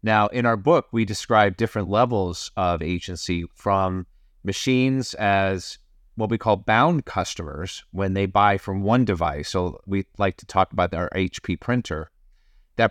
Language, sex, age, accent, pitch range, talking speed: English, male, 30-49, American, 95-115 Hz, 160 wpm